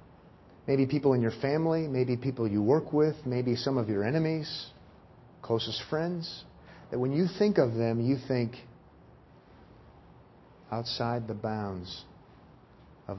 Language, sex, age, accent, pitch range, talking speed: English, male, 50-69, American, 115-155 Hz, 130 wpm